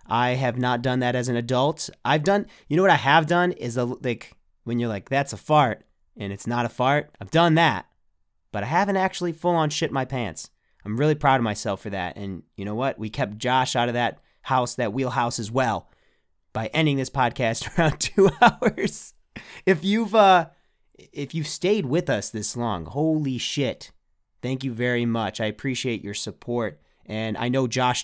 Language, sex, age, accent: English, male, 30-49, American